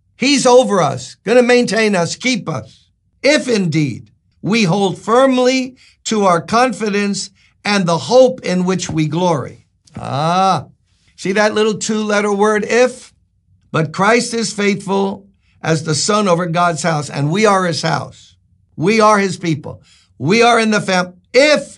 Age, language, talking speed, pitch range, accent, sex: 60-79, English, 155 wpm, 135-200 Hz, American, male